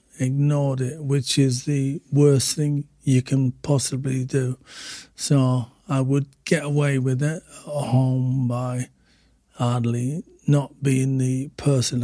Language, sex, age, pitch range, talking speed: English, male, 50-69, 130-150 Hz, 130 wpm